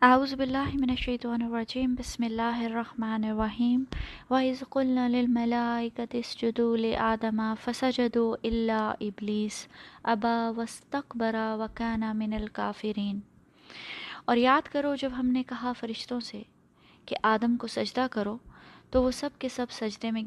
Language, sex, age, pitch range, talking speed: Urdu, female, 20-39, 220-280 Hz, 120 wpm